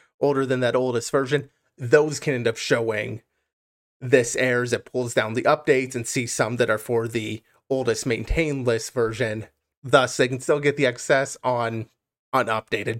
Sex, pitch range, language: male, 120-145 Hz, English